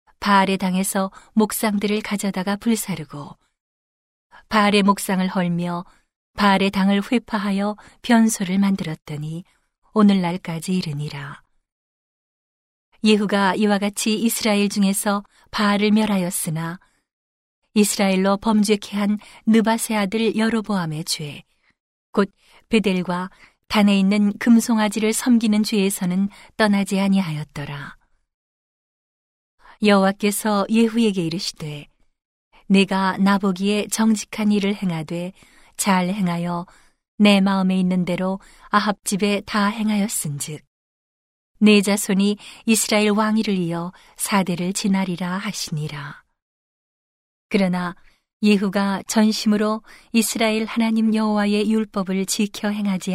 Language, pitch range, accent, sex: Korean, 180-210 Hz, native, female